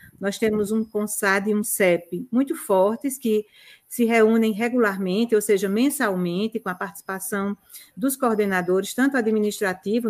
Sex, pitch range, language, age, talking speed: female, 200-260 Hz, Portuguese, 50-69, 135 wpm